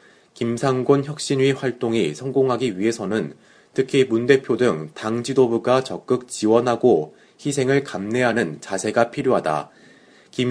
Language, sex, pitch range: Korean, male, 115-130 Hz